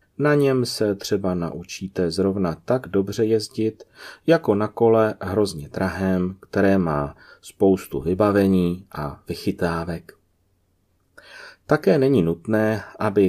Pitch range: 85-105 Hz